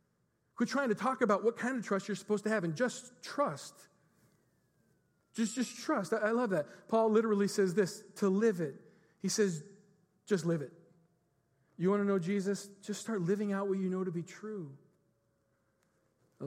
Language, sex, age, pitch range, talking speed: English, male, 40-59, 155-195 Hz, 185 wpm